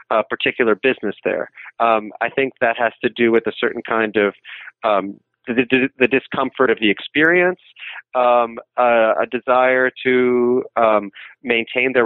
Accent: American